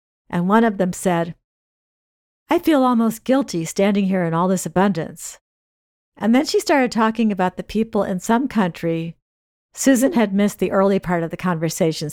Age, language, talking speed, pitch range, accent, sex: 50-69, English, 175 wpm, 170-225 Hz, American, female